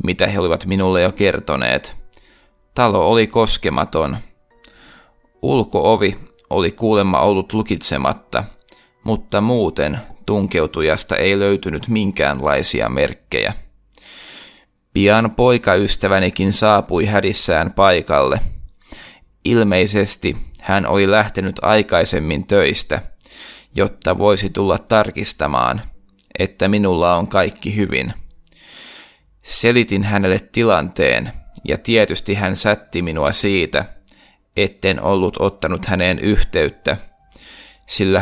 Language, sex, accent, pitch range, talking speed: Finnish, male, native, 95-110 Hz, 90 wpm